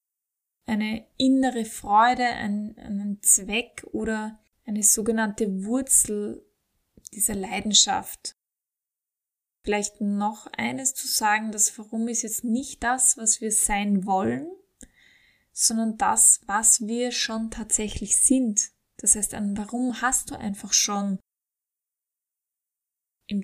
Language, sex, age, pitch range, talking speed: German, female, 10-29, 210-245 Hz, 110 wpm